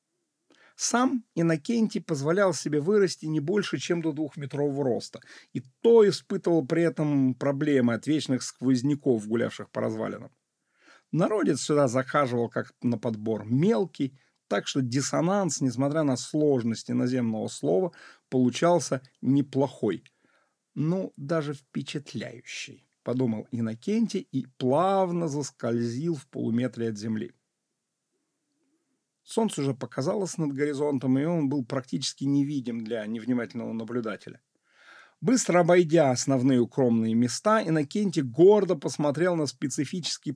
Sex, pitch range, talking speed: male, 125-165 Hz, 110 wpm